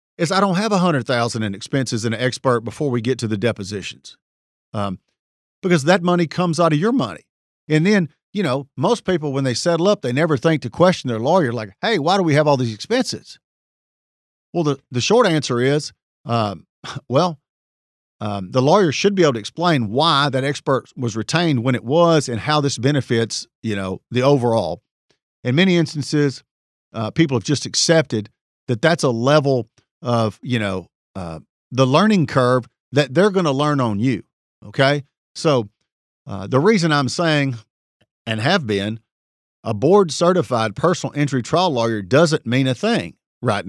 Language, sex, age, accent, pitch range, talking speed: English, male, 50-69, American, 115-160 Hz, 180 wpm